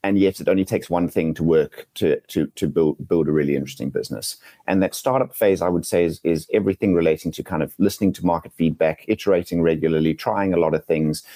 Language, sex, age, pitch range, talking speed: English, male, 30-49, 80-95 Hz, 220 wpm